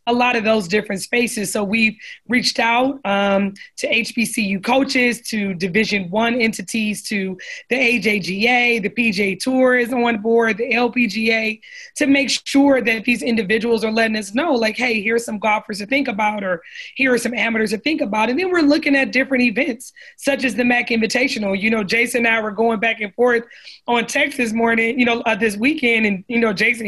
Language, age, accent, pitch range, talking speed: English, 20-39, American, 225-260 Hz, 200 wpm